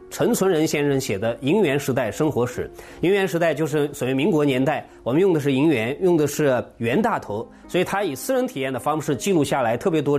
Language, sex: Chinese, male